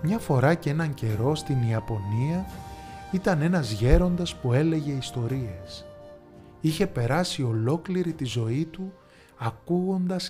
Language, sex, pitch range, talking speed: Greek, male, 105-160 Hz, 115 wpm